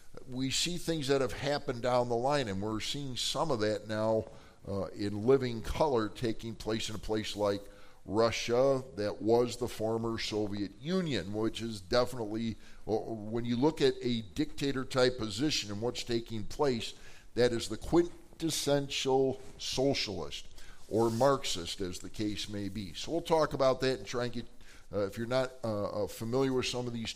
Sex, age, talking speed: male, 50-69, 170 wpm